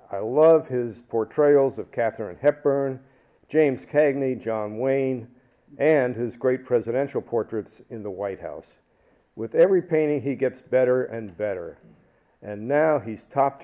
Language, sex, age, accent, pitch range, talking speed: English, male, 50-69, American, 105-130 Hz, 140 wpm